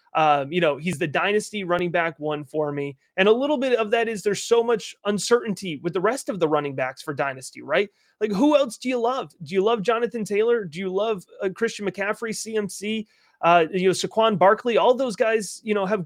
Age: 30-49